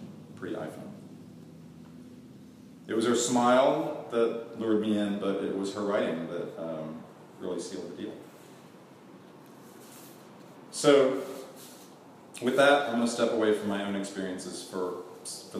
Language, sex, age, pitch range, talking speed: English, male, 40-59, 90-115 Hz, 130 wpm